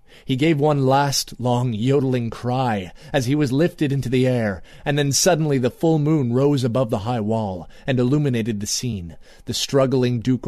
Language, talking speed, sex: English, 185 wpm, male